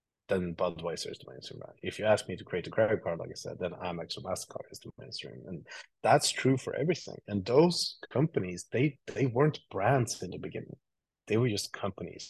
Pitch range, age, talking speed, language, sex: 95-120 Hz, 30-49, 215 wpm, English, male